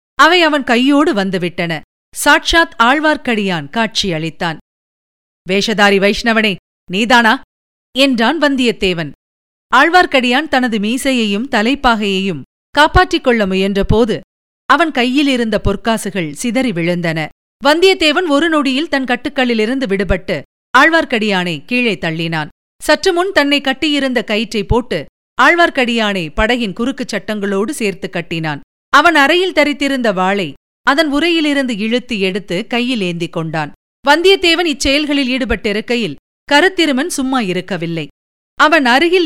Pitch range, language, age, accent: 200-290 Hz, Tamil, 50-69, native